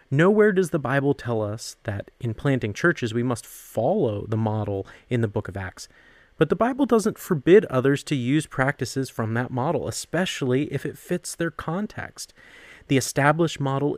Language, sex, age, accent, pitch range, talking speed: English, male, 30-49, American, 110-140 Hz, 175 wpm